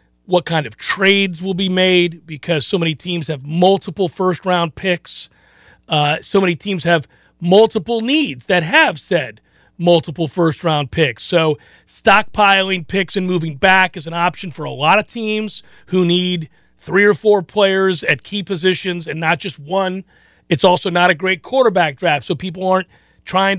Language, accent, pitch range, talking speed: English, American, 170-195 Hz, 170 wpm